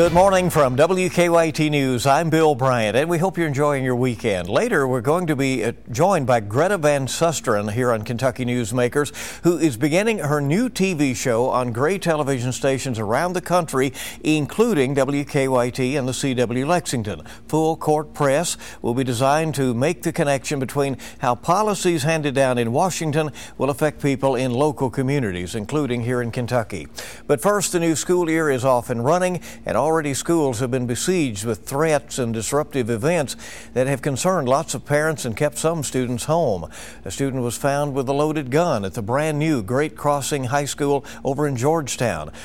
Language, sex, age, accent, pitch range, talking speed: English, male, 60-79, American, 125-155 Hz, 180 wpm